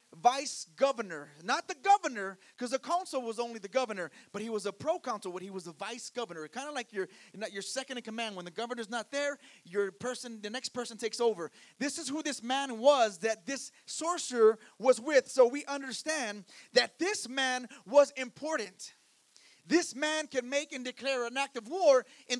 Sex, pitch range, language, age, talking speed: male, 225-290 Hz, English, 30-49, 200 wpm